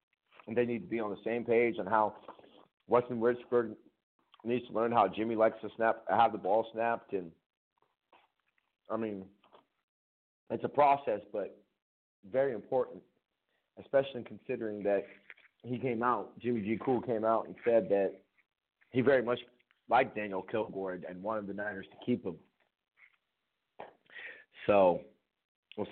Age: 40-59